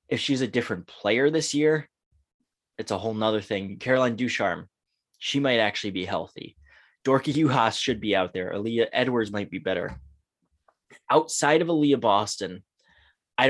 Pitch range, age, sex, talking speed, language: 100-125 Hz, 20-39, male, 155 wpm, English